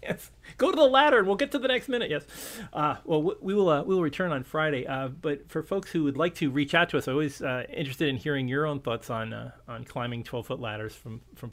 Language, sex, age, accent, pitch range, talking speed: English, male, 40-59, American, 120-150 Hz, 275 wpm